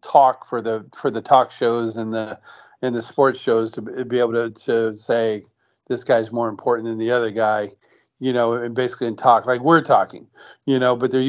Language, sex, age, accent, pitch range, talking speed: English, male, 40-59, American, 115-135 Hz, 215 wpm